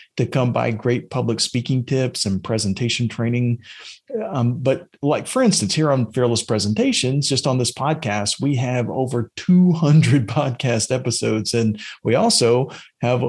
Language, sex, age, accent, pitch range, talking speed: English, male, 40-59, American, 110-140 Hz, 150 wpm